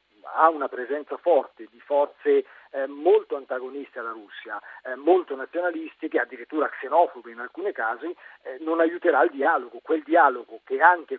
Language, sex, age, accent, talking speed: Italian, male, 40-59, native, 145 wpm